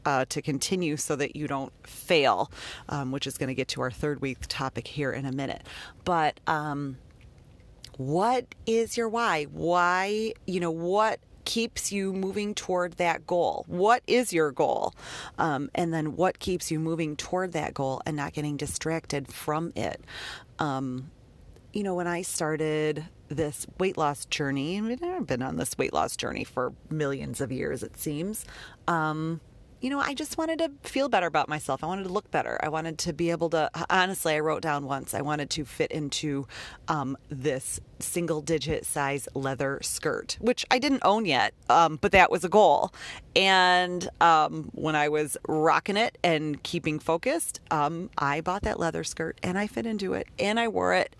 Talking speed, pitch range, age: 185 wpm, 140-185 Hz, 30-49